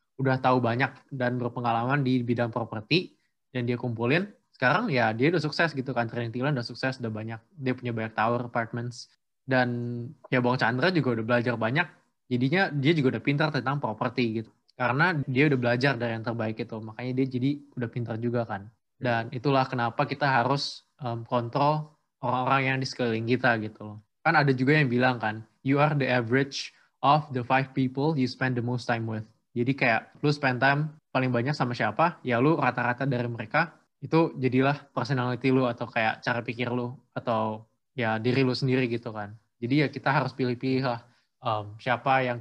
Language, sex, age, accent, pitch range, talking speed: Indonesian, male, 20-39, native, 120-135 Hz, 185 wpm